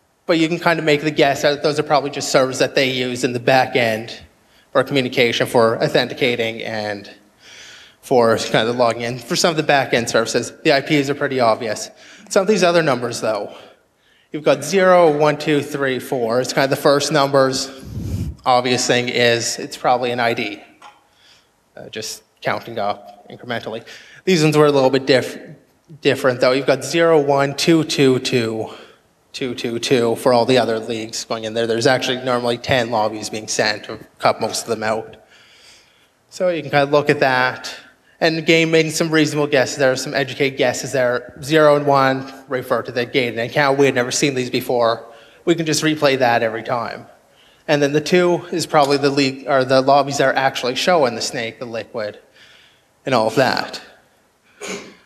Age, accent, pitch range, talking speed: 20-39, American, 120-150 Hz, 195 wpm